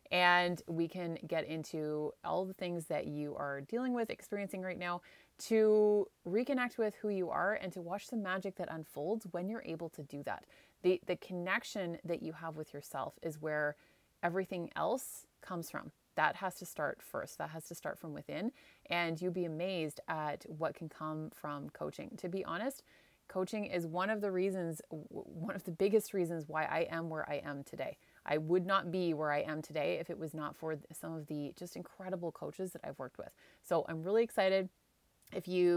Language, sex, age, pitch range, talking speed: English, female, 30-49, 160-195 Hz, 200 wpm